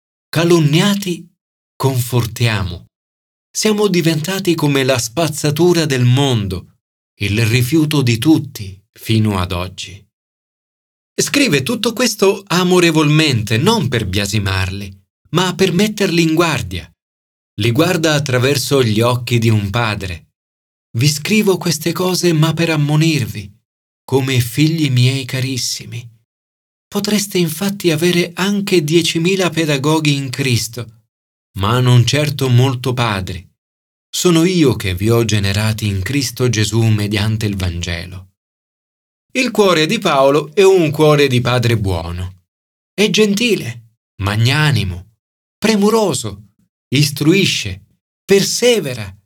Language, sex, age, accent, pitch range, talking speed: Italian, male, 40-59, native, 100-165 Hz, 105 wpm